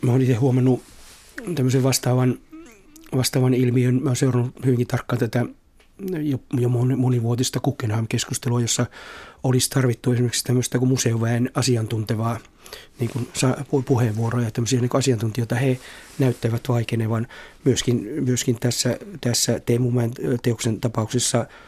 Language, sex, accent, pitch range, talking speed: Finnish, male, native, 120-130 Hz, 115 wpm